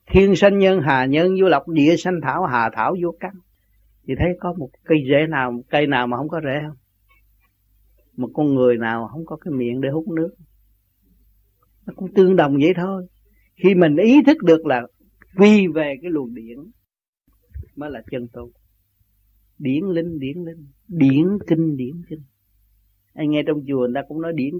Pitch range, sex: 115-180 Hz, male